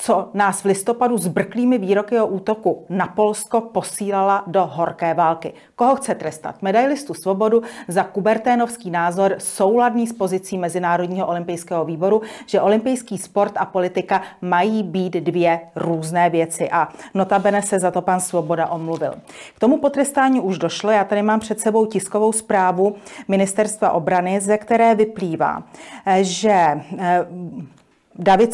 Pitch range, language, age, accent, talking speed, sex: 180-220 Hz, Czech, 40-59, native, 140 wpm, female